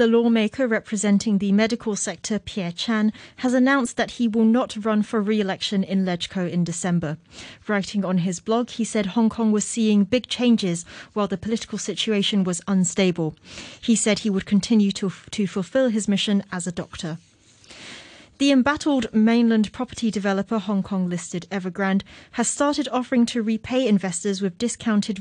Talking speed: 165 wpm